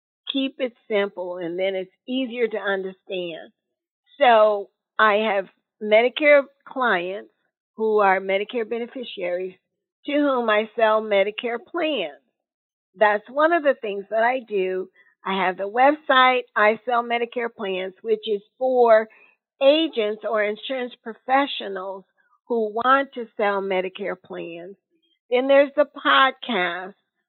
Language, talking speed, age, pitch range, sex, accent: English, 125 wpm, 50-69, 210-250 Hz, female, American